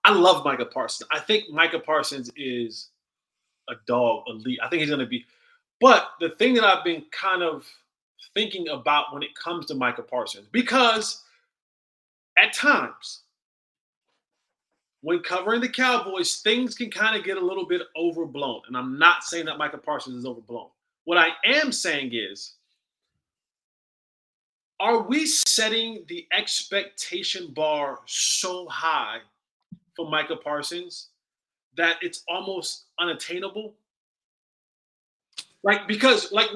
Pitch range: 155-230 Hz